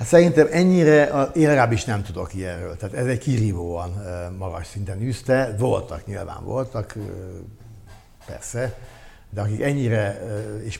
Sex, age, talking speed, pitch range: male, 60-79, 135 wpm, 100-120 Hz